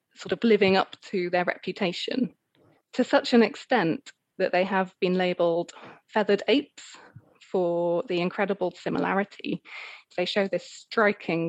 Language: English